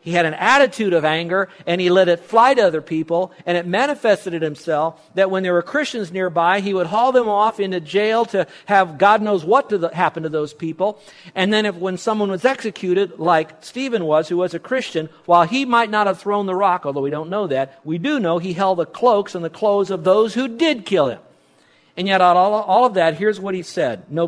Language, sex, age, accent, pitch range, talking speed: English, male, 50-69, American, 155-200 Hz, 240 wpm